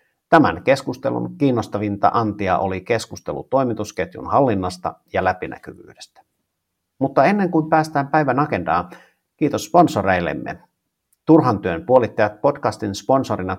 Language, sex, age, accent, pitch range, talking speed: English, male, 50-69, Finnish, 95-130 Hz, 100 wpm